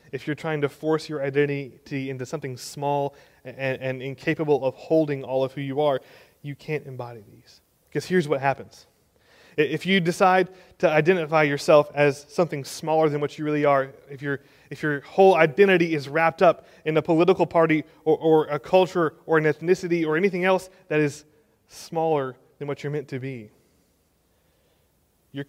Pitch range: 115-150 Hz